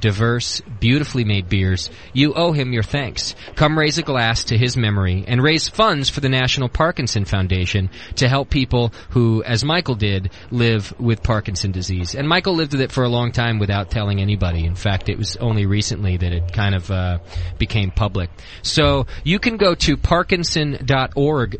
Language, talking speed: English, 185 wpm